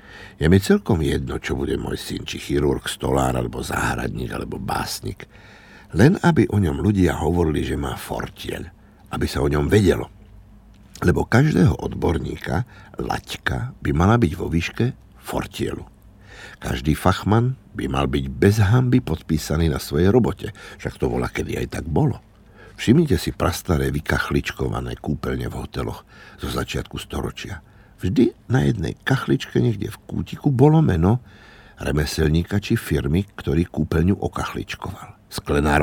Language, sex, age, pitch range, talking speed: Slovak, male, 60-79, 70-100 Hz, 140 wpm